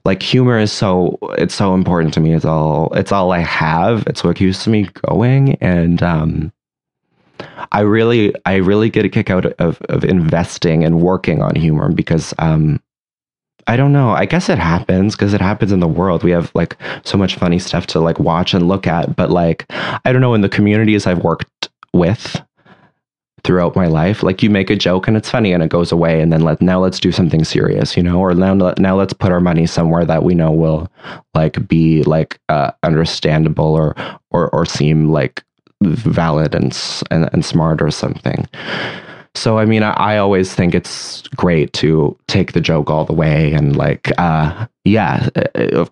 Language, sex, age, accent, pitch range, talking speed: English, male, 20-39, American, 80-105 Hz, 195 wpm